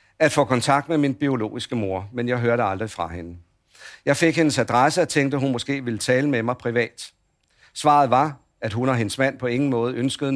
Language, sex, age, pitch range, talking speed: Danish, male, 50-69, 115-150 Hz, 220 wpm